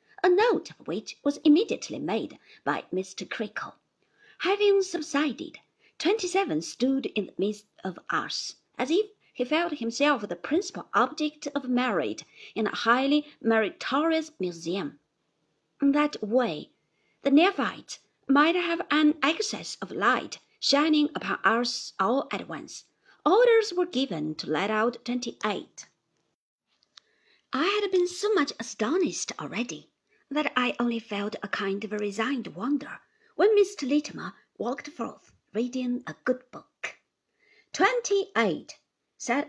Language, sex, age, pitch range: Chinese, female, 50-69, 230-340 Hz